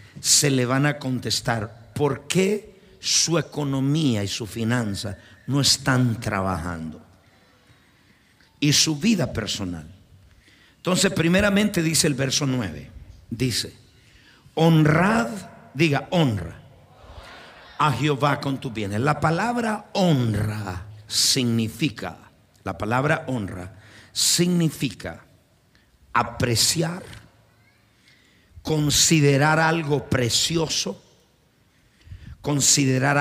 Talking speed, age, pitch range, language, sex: 85 wpm, 50-69, 110-160 Hz, Spanish, male